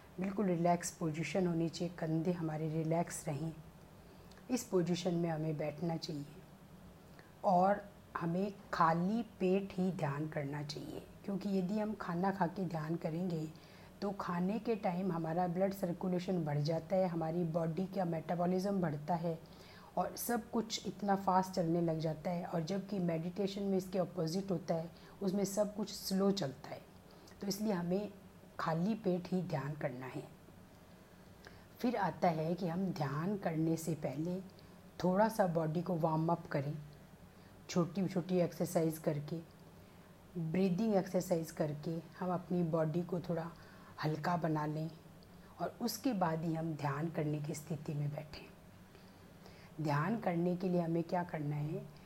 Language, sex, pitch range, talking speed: Hindi, female, 160-190 Hz, 150 wpm